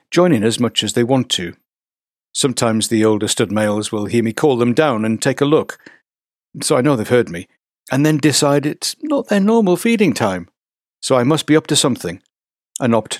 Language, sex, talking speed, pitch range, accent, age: English, male, 215 wpm, 105-150 Hz, British, 60-79